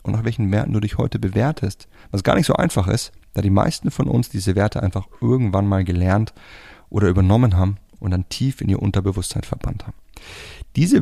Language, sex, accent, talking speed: German, male, German, 200 wpm